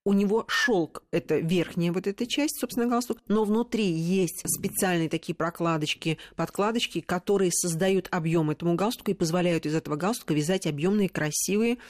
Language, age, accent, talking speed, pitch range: Russian, 40-59, native, 155 wpm, 165-215 Hz